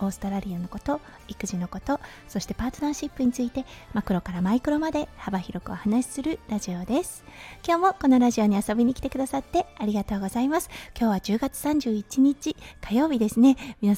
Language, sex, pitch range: Japanese, female, 205-270 Hz